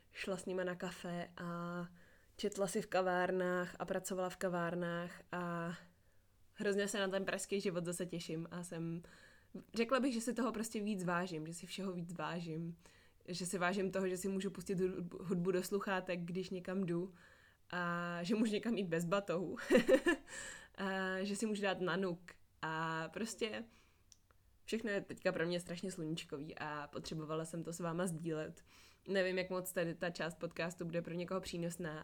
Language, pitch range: Czech, 165-185 Hz